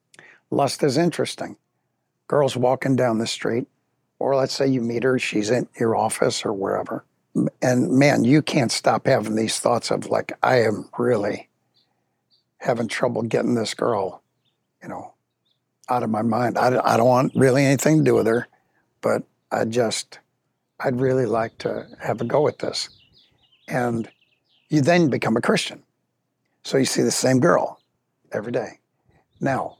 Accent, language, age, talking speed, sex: American, English, 60-79, 160 wpm, male